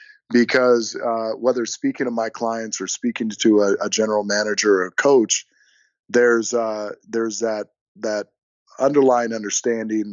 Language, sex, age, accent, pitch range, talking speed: English, male, 30-49, American, 105-120 Hz, 140 wpm